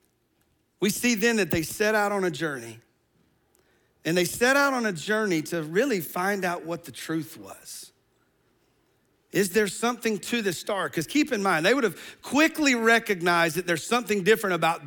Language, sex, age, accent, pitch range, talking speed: English, male, 40-59, American, 175-225 Hz, 180 wpm